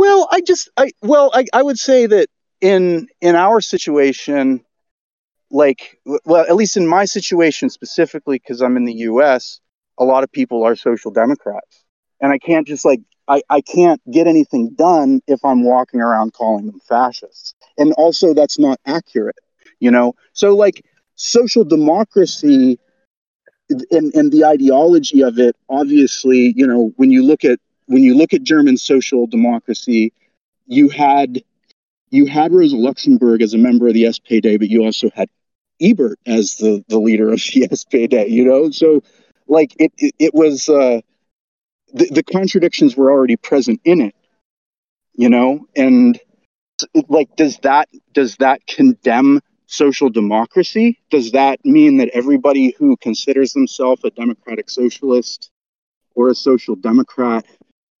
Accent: American